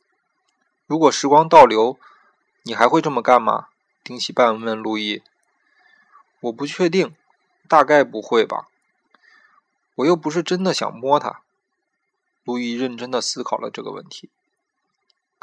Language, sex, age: Chinese, male, 20-39